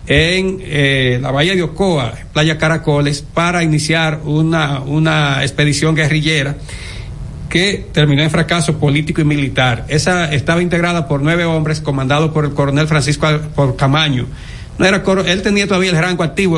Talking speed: 155 wpm